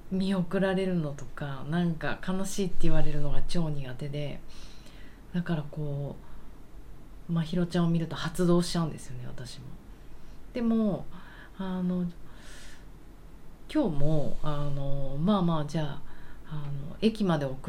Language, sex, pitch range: Japanese, female, 145-185 Hz